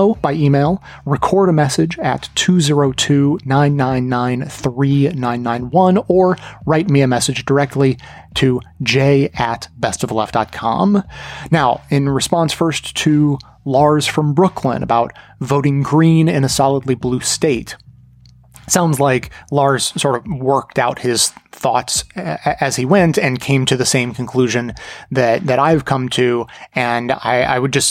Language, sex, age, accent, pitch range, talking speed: English, male, 30-49, American, 125-145 Hz, 135 wpm